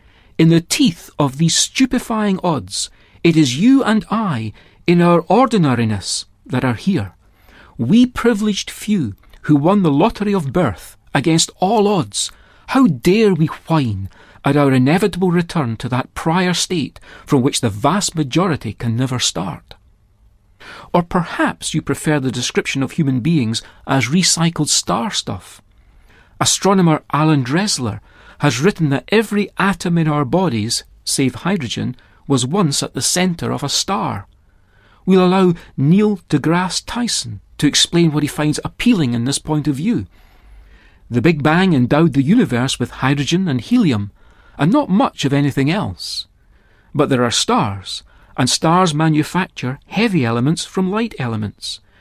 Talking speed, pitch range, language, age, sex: 150 wpm, 115-180 Hz, English, 40-59, male